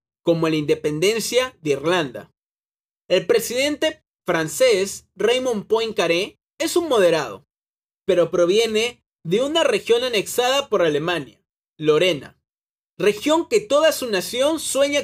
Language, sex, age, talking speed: Spanish, male, 30-49, 110 wpm